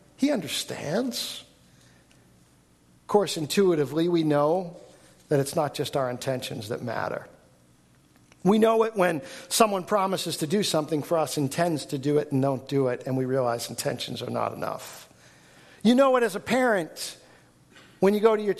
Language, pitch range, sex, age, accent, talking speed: English, 125-180 Hz, male, 50-69, American, 170 wpm